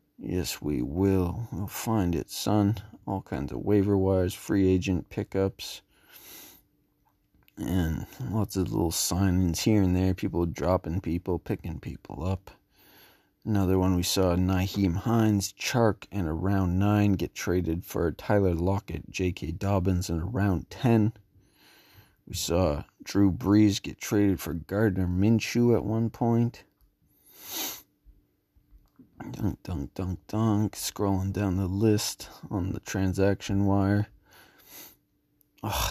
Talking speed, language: 125 wpm, English